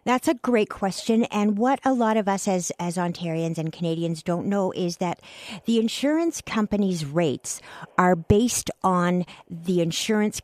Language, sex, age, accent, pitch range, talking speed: English, female, 50-69, American, 155-205 Hz, 160 wpm